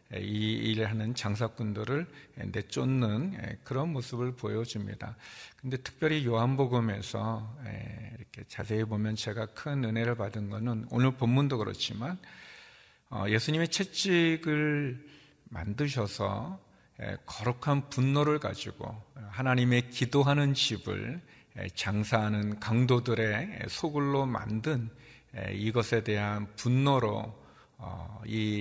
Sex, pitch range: male, 105-130 Hz